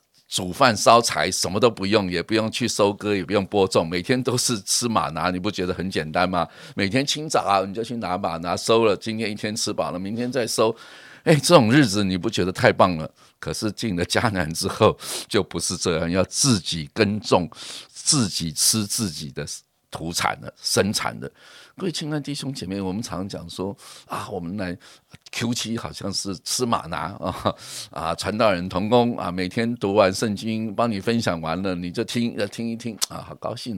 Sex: male